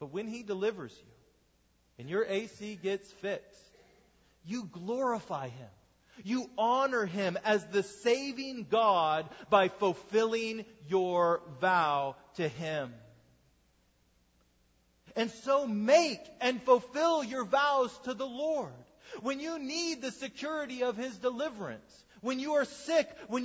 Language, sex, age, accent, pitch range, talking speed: English, male, 40-59, American, 200-275 Hz, 125 wpm